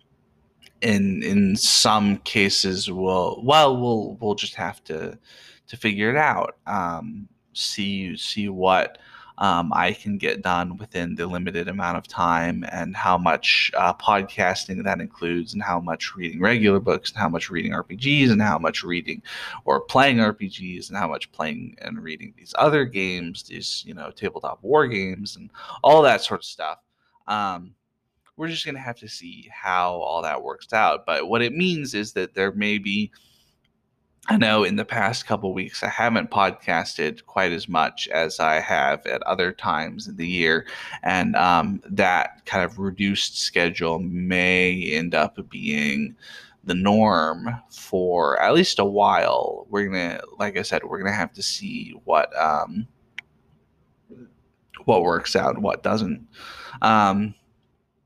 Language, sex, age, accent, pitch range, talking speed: English, male, 20-39, American, 90-120 Hz, 165 wpm